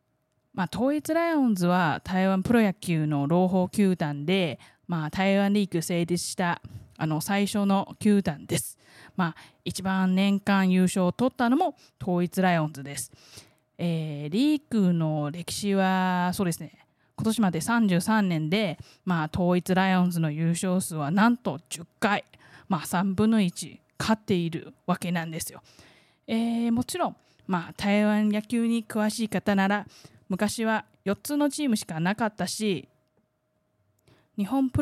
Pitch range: 170-210 Hz